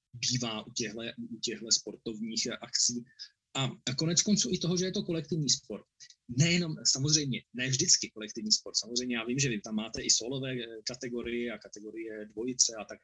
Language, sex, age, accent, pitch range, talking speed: Czech, male, 20-39, native, 120-150 Hz, 165 wpm